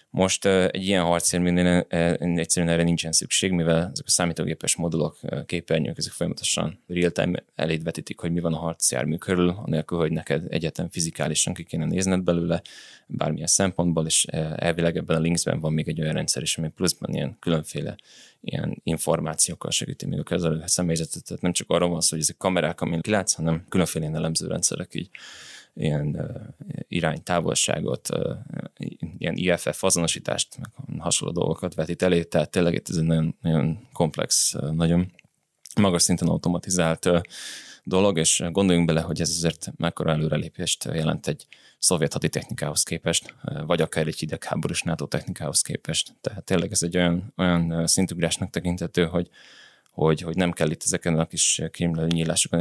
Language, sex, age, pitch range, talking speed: Hungarian, male, 20-39, 80-90 Hz, 155 wpm